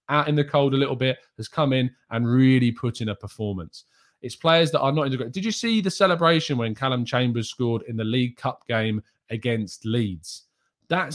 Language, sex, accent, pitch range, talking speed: English, male, British, 105-140 Hz, 210 wpm